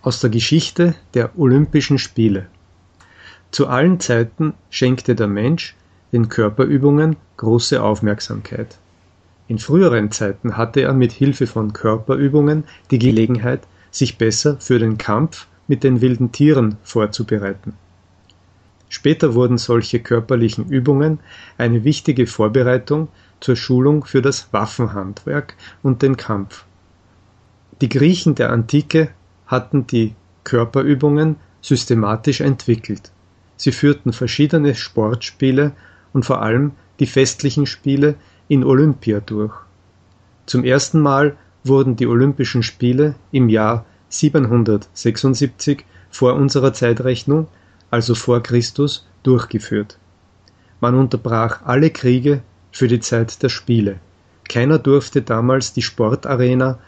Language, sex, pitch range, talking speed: German, male, 105-140 Hz, 110 wpm